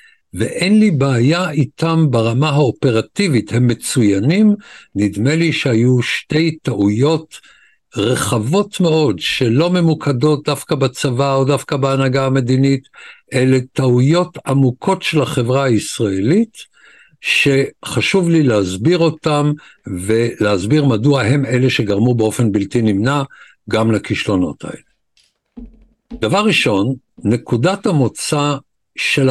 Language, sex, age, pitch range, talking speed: Hebrew, male, 60-79, 120-165 Hz, 100 wpm